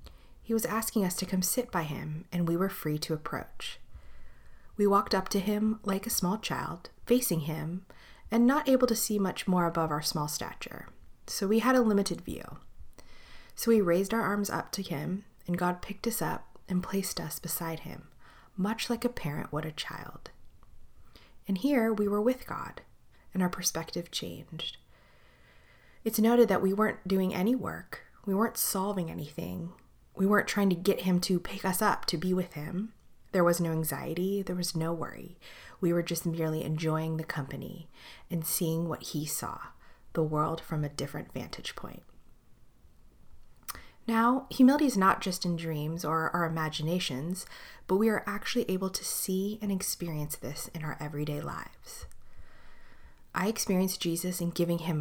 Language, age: English, 30-49